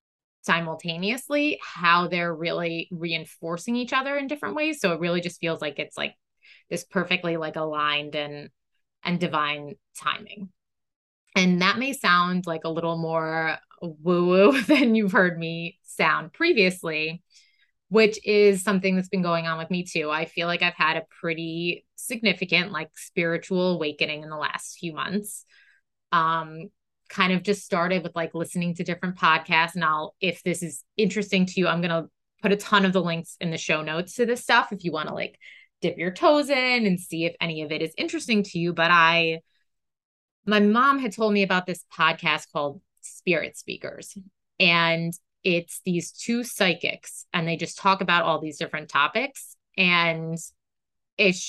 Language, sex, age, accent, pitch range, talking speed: English, female, 20-39, American, 165-200 Hz, 175 wpm